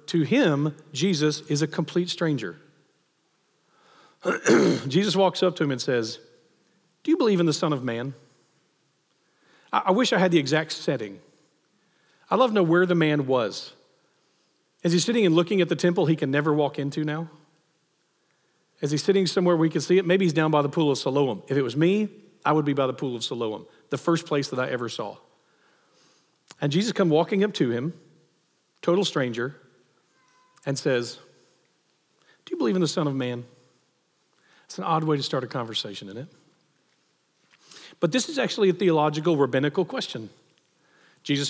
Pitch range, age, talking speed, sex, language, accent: 140-190 Hz, 40-59, 180 wpm, male, English, American